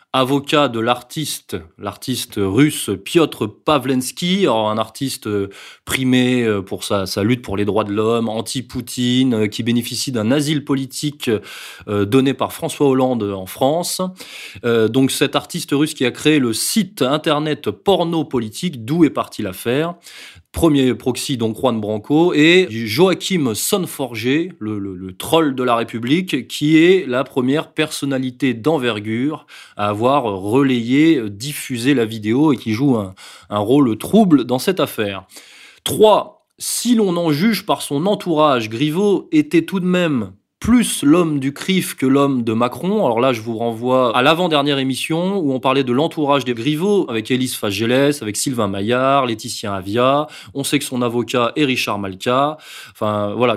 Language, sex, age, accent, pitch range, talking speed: French, male, 20-39, French, 115-155 Hz, 155 wpm